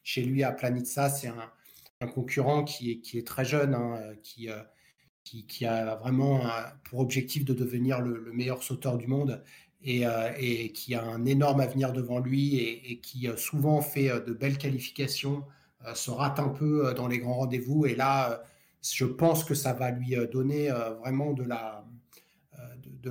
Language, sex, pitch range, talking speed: French, male, 120-140 Hz, 175 wpm